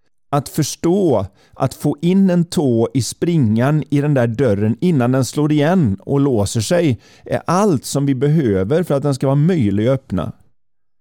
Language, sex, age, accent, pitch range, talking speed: Swedish, male, 40-59, native, 115-150 Hz, 180 wpm